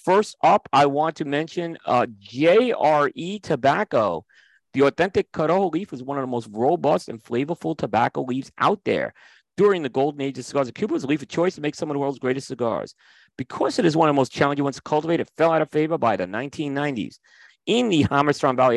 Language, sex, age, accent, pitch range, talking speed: English, male, 40-59, American, 130-170 Hz, 220 wpm